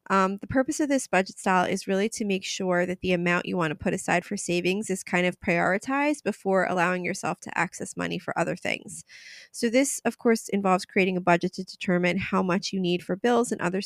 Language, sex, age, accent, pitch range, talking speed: English, female, 20-39, American, 175-210 Hz, 230 wpm